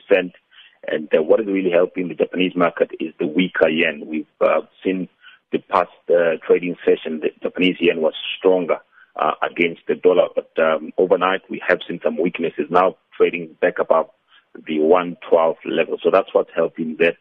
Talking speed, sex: 170 wpm, male